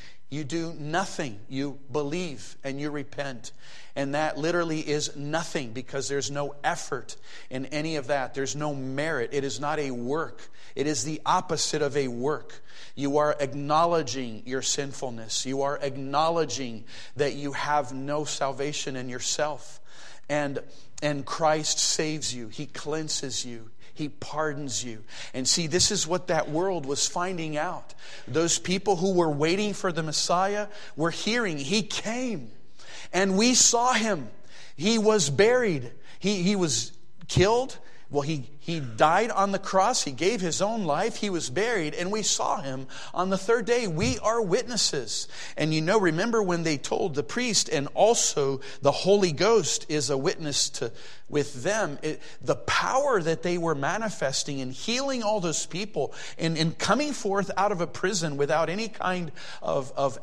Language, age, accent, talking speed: English, 40-59, American, 165 wpm